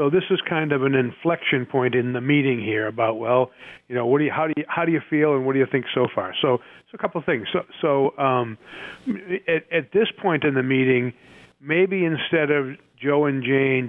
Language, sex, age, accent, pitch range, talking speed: English, male, 50-69, American, 130-155 Hz, 240 wpm